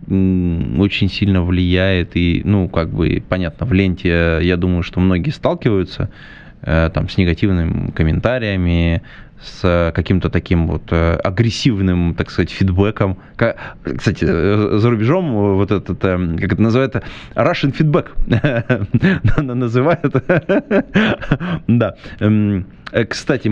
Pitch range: 95-125 Hz